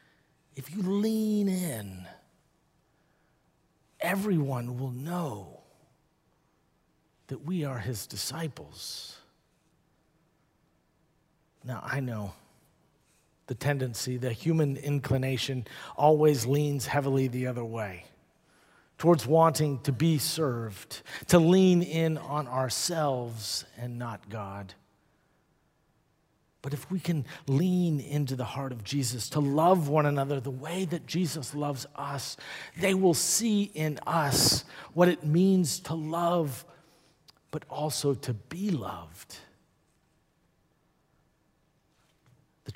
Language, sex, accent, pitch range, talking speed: English, male, American, 125-160 Hz, 105 wpm